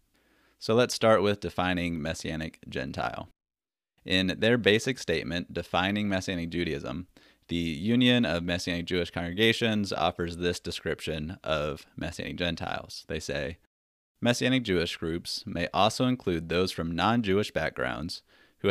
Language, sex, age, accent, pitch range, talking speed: English, male, 30-49, American, 85-110 Hz, 125 wpm